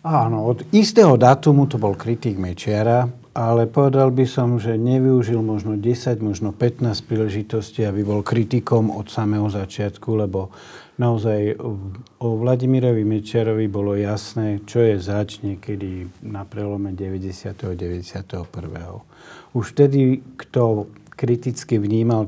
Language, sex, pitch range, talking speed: Slovak, male, 95-115 Hz, 125 wpm